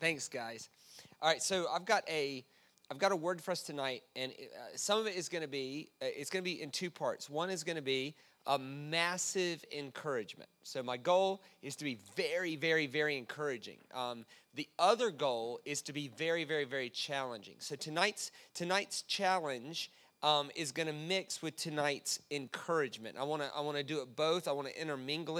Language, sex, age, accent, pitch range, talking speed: English, male, 30-49, American, 130-165 Hz, 195 wpm